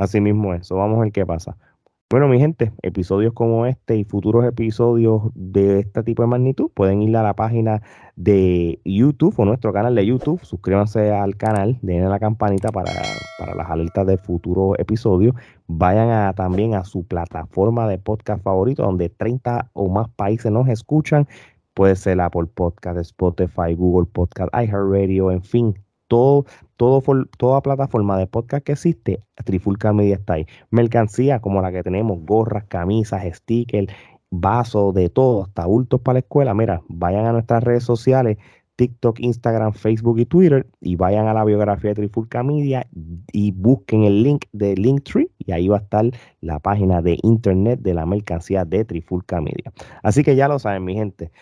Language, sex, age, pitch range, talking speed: Spanish, male, 30-49, 95-120 Hz, 175 wpm